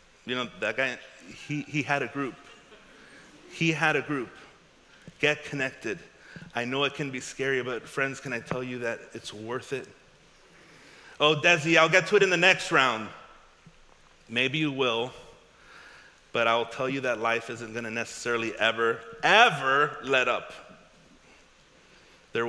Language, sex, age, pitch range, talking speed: English, male, 30-49, 125-170 Hz, 155 wpm